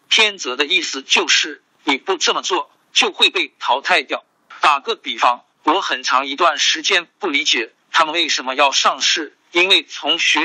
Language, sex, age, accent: Chinese, male, 50-69, native